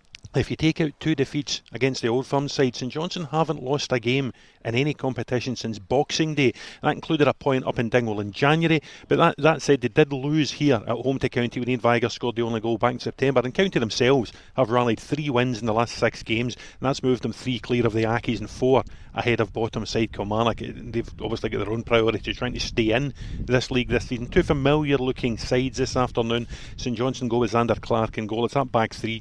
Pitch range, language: 115-135 Hz, English